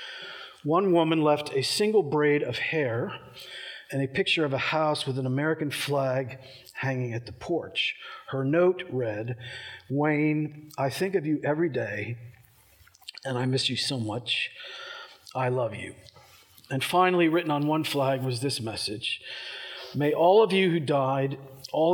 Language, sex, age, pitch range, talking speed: English, male, 50-69, 130-170 Hz, 155 wpm